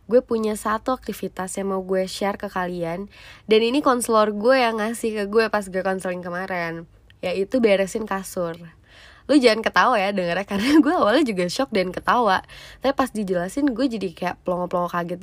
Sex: female